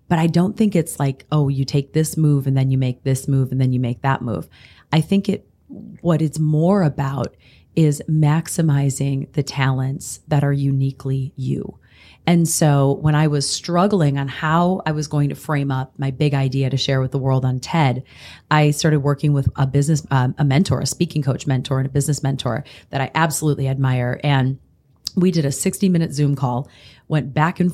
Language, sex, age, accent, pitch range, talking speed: English, female, 30-49, American, 135-160 Hz, 205 wpm